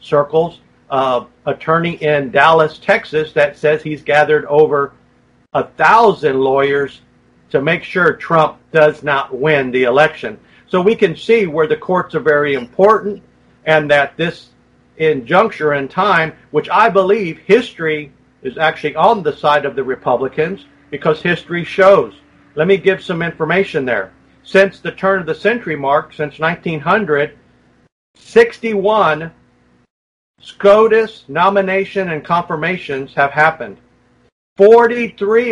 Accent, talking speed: American, 130 wpm